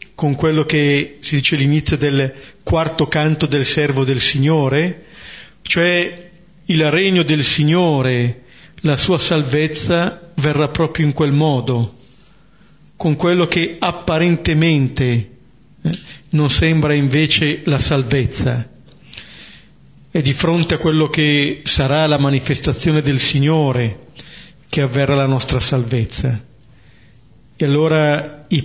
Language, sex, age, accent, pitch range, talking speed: Italian, male, 40-59, native, 135-160 Hz, 115 wpm